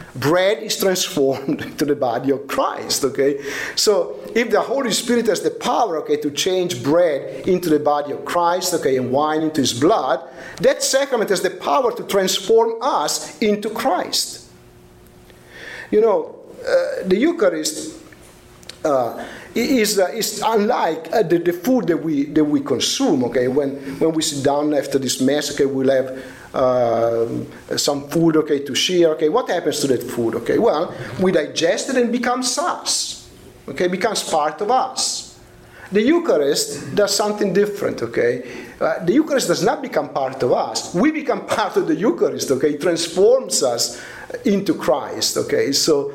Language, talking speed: English, 170 wpm